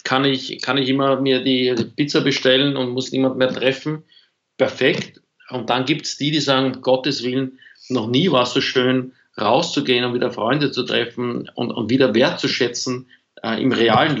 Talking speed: 180 wpm